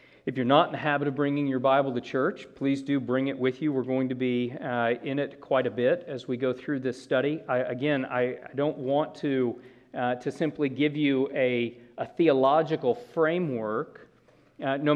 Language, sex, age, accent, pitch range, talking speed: English, male, 40-59, American, 120-140 Hz, 205 wpm